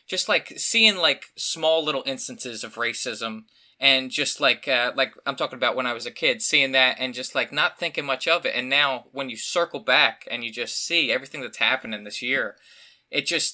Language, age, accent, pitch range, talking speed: English, 20-39, American, 125-145 Hz, 215 wpm